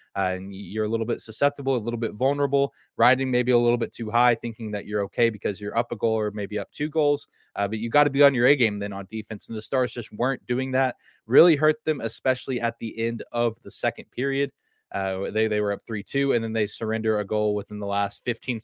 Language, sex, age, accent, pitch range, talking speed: English, male, 20-39, American, 105-125 Hz, 260 wpm